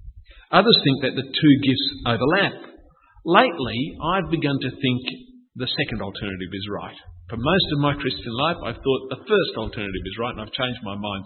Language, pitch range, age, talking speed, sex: English, 110-165 Hz, 50-69, 185 wpm, male